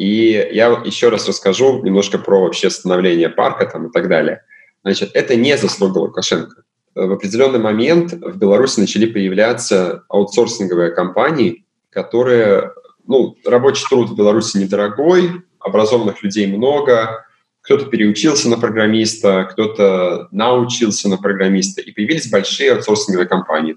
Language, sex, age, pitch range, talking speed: Russian, male, 20-39, 100-125 Hz, 130 wpm